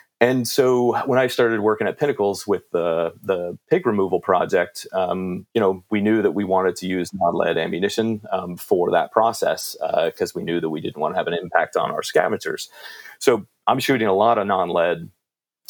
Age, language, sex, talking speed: 30-49, English, male, 200 wpm